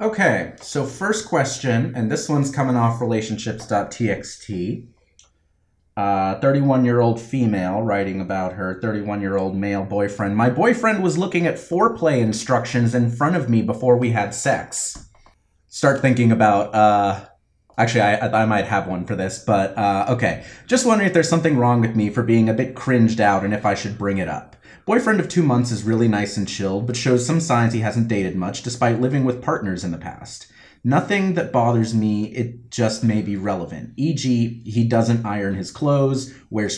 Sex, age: male, 30-49